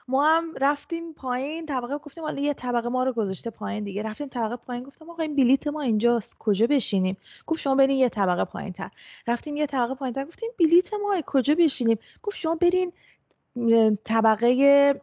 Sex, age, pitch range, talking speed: female, 20-39, 215-280 Hz, 180 wpm